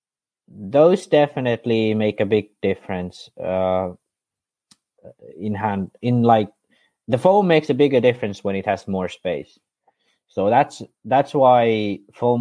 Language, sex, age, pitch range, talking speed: English, male, 20-39, 95-120 Hz, 130 wpm